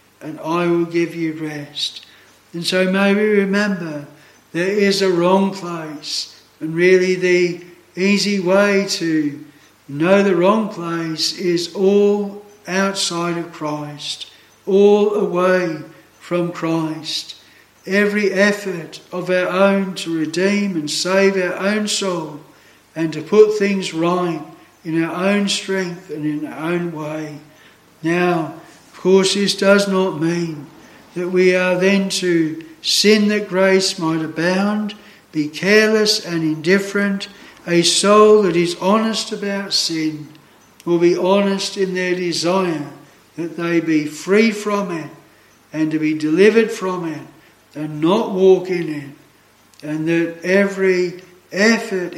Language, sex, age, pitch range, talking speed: English, male, 60-79, 160-195 Hz, 130 wpm